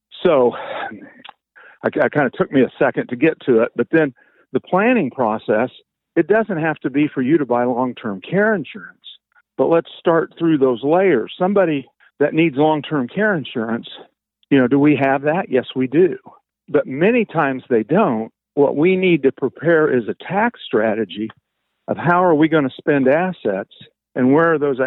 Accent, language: American, English